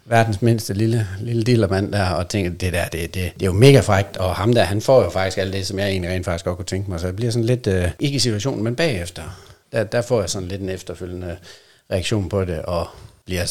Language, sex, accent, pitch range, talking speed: Danish, male, native, 95-115 Hz, 260 wpm